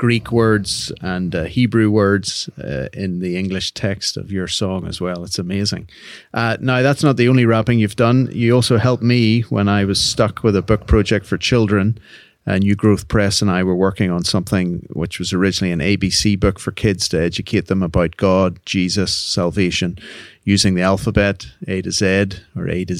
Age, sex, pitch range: 30-49, male, 95-115 Hz